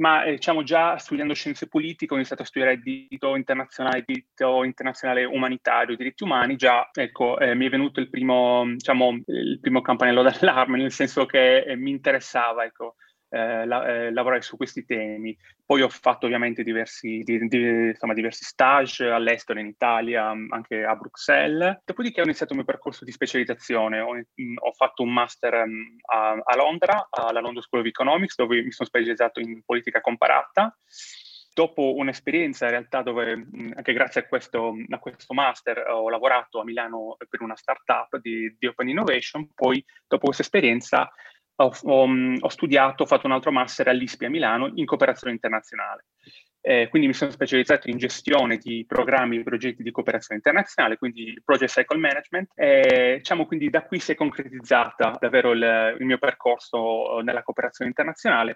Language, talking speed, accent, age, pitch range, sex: Italian, 170 wpm, native, 20-39, 115-155 Hz, male